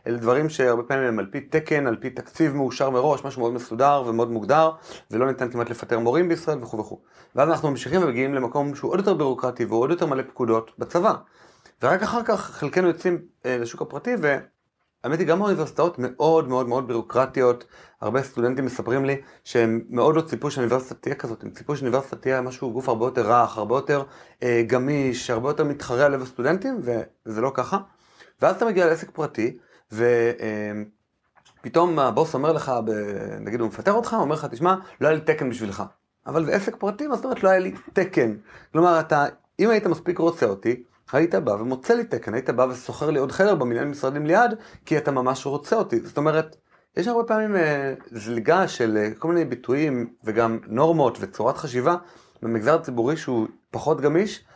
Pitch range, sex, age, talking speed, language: 120-165 Hz, male, 30-49, 175 wpm, Hebrew